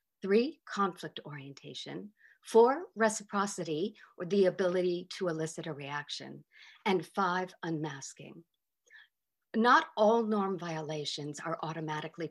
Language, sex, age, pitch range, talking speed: English, female, 50-69, 165-235 Hz, 100 wpm